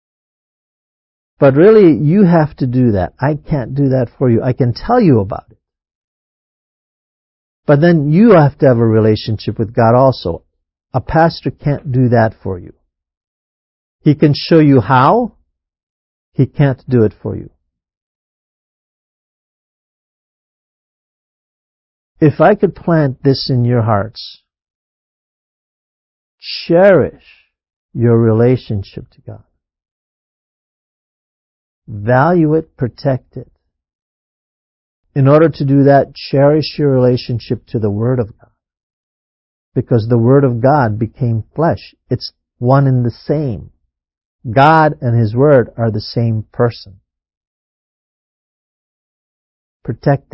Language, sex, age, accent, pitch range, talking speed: English, male, 50-69, American, 90-140 Hz, 120 wpm